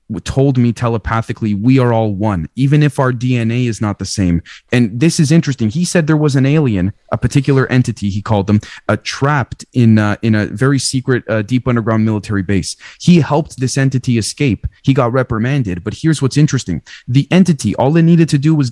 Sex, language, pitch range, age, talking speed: male, English, 105-135 Hz, 20-39, 205 wpm